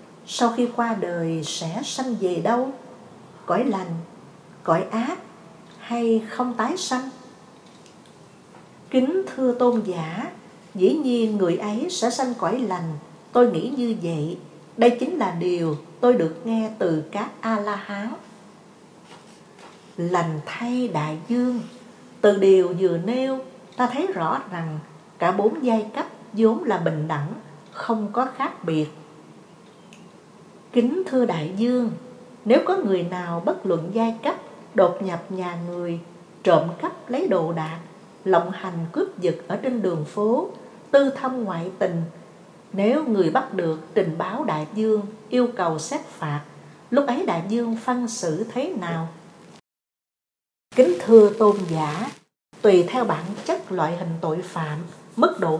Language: Vietnamese